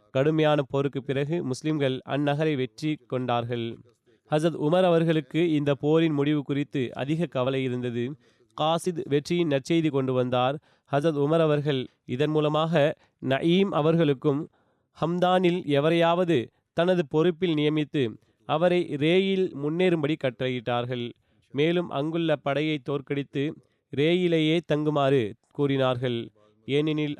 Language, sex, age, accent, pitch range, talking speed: Tamil, male, 30-49, native, 130-160 Hz, 100 wpm